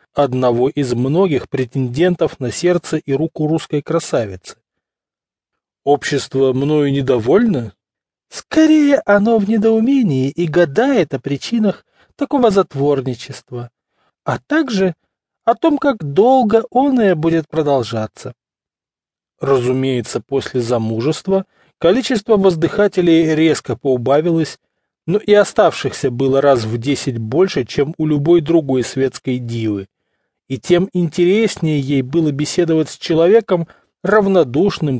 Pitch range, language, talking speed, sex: 130-175 Hz, English, 110 wpm, male